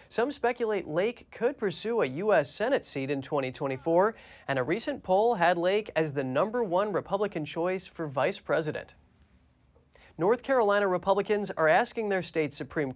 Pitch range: 140-205 Hz